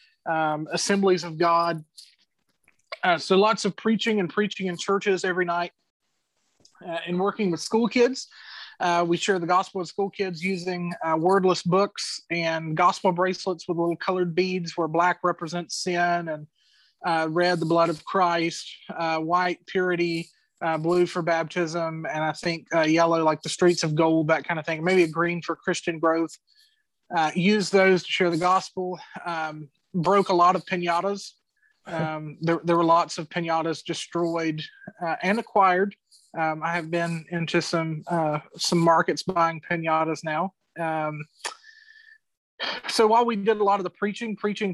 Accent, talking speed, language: American, 170 wpm, English